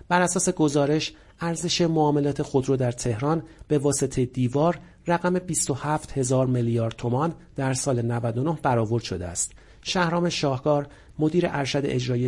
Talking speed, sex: 130 wpm, male